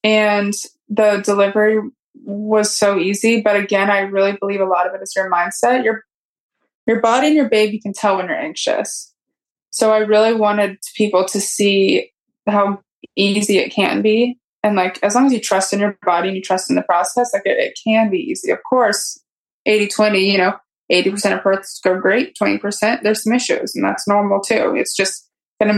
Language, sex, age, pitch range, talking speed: English, female, 20-39, 195-225 Hz, 200 wpm